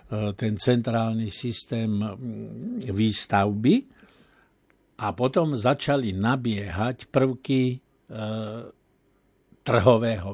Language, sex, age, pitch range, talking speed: Slovak, male, 60-79, 110-140 Hz, 60 wpm